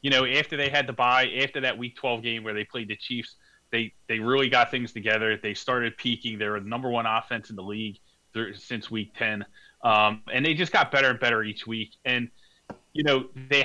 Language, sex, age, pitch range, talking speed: English, male, 30-49, 110-135 Hz, 230 wpm